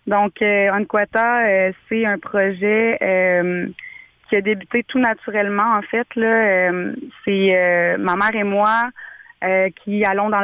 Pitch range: 185-210 Hz